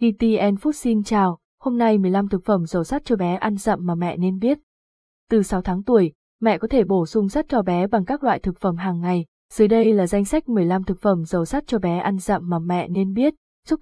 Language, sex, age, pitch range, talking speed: Vietnamese, female, 20-39, 185-230 Hz, 250 wpm